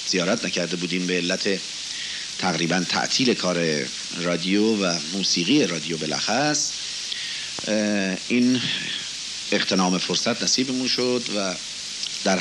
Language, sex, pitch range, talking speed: Persian, male, 90-120 Hz, 100 wpm